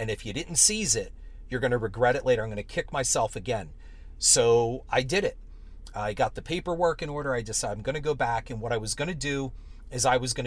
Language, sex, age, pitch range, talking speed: English, male, 40-59, 110-145 Hz, 265 wpm